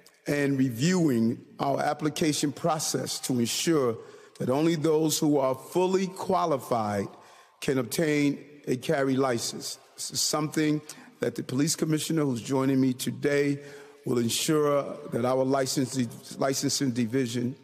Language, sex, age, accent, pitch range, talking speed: English, male, 40-59, American, 135-170 Hz, 125 wpm